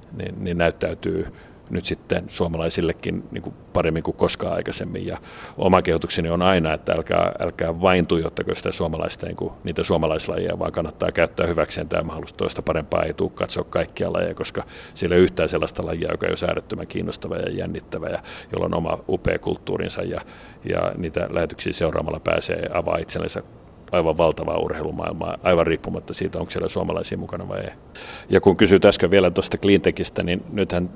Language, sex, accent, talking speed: Finnish, male, native, 170 wpm